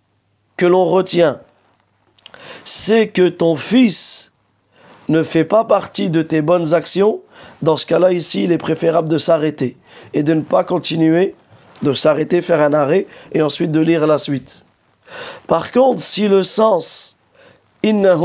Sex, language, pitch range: male, French, 155-195 Hz